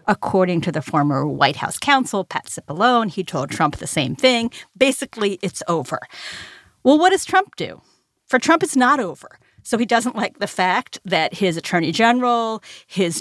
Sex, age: female, 40-59